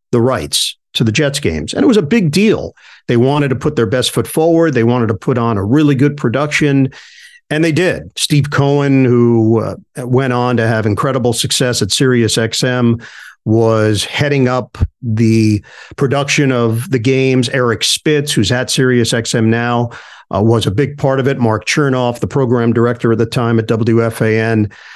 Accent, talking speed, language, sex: American, 185 wpm, English, male